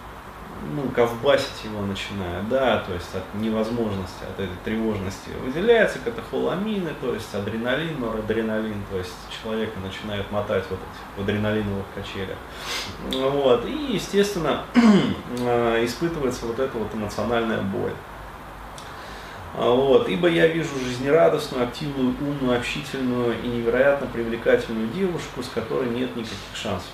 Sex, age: male, 30-49